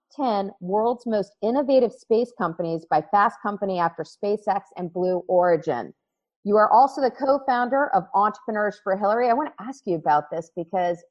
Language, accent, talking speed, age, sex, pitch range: English, American, 165 wpm, 40-59, female, 185-245 Hz